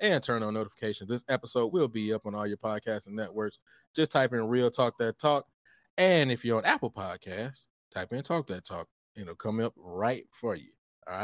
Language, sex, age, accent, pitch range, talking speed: English, male, 20-39, American, 100-130 Hz, 220 wpm